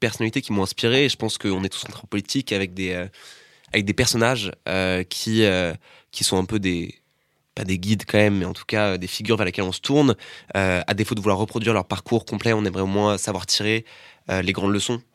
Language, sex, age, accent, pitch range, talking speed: French, male, 20-39, French, 95-110 Hz, 240 wpm